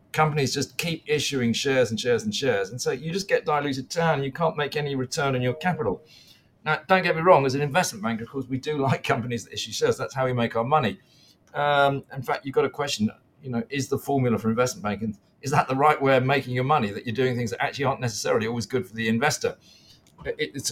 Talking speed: 250 wpm